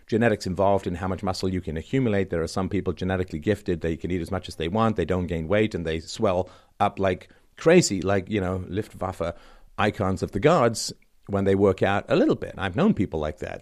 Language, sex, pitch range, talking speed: English, male, 95-130 Hz, 235 wpm